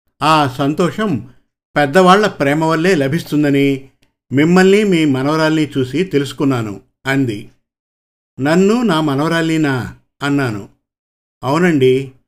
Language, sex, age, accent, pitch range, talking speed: Telugu, male, 50-69, native, 135-170 Hz, 85 wpm